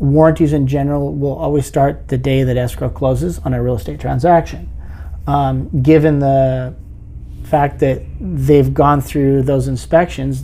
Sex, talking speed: male, 150 wpm